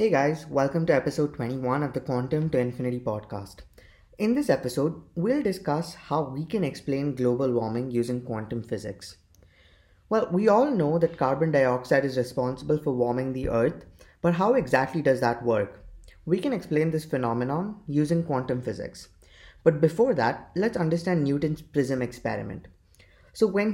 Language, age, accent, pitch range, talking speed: English, 20-39, Indian, 125-165 Hz, 160 wpm